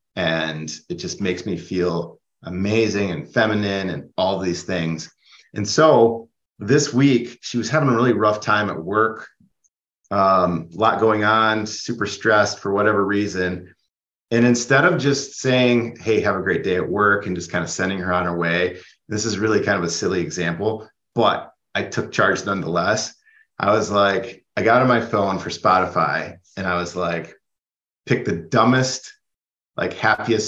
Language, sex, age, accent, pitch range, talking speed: English, male, 30-49, American, 90-115 Hz, 175 wpm